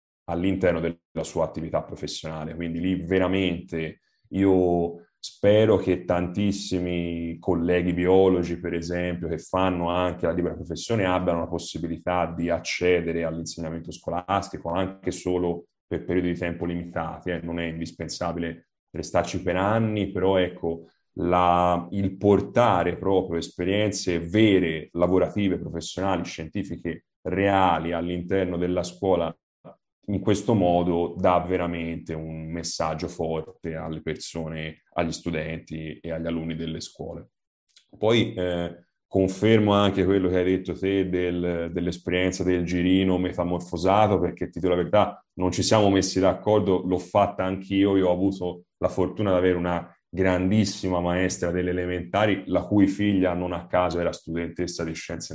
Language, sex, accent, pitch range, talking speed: Italian, male, native, 85-95 Hz, 130 wpm